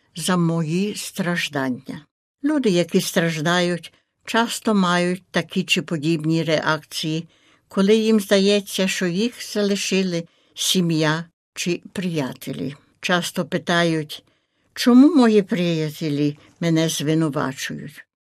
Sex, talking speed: female, 90 wpm